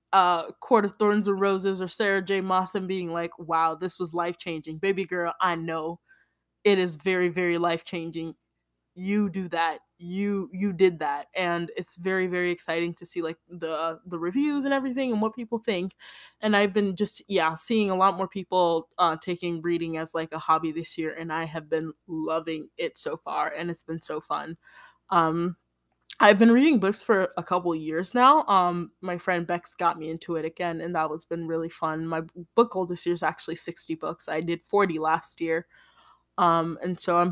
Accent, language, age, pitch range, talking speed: American, English, 20-39, 165-195 Hz, 205 wpm